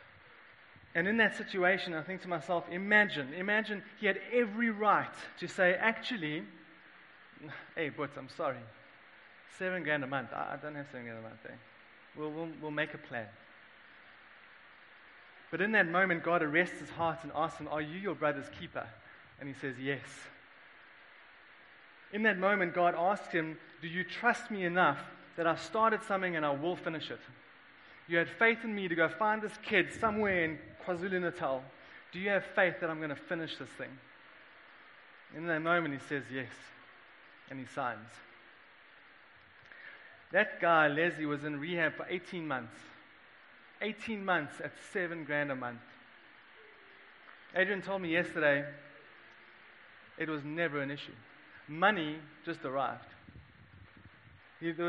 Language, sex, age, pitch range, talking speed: English, male, 20-39, 145-185 Hz, 155 wpm